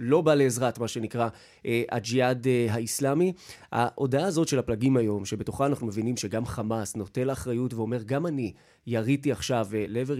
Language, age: Hebrew, 20-39